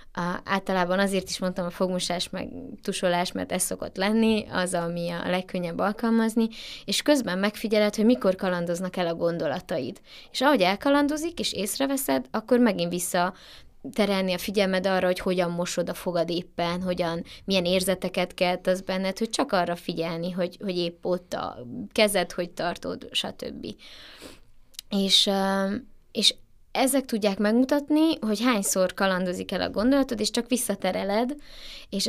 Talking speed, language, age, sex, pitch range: 145 wpm, Hungarian, 20-39, female, 180-215 Hz